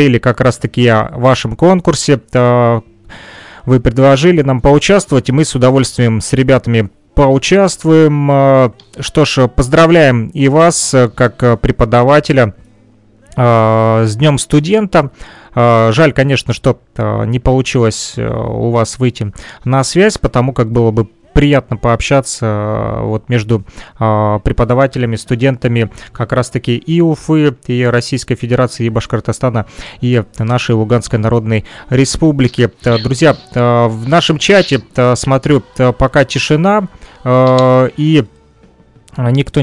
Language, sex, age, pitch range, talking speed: Russian, male, 30-49, 120-150 Hz, 105 wpm